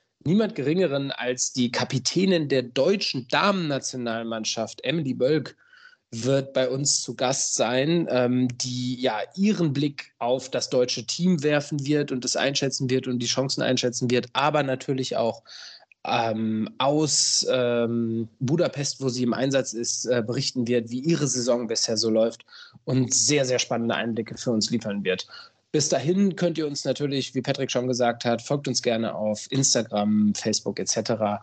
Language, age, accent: German, 20-39, German